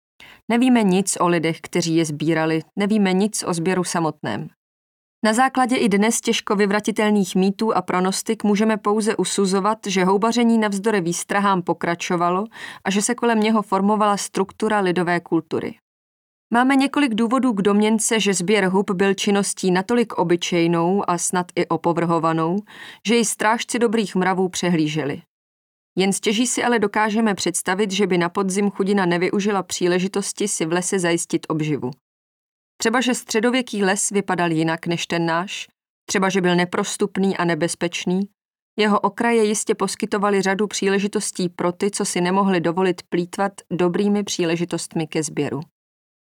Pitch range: 175-215 Hz